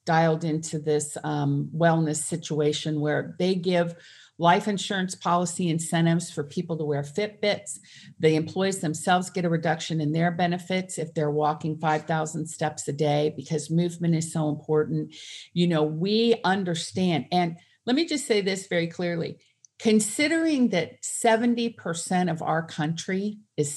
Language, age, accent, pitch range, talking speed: English, 50-69, American, 155-195 Hz, 145 wpm